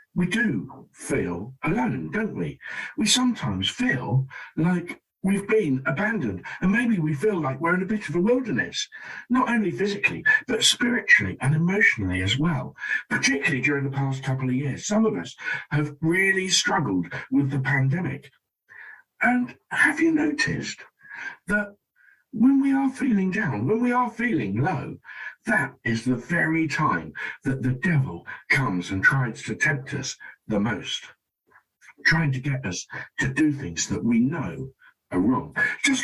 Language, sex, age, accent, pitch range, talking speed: English, male, 50-69, British, 135-230 Hz, 155 wpm